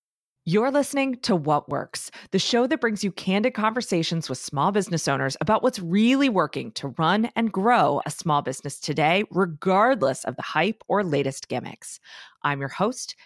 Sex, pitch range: female, 155-230 Hz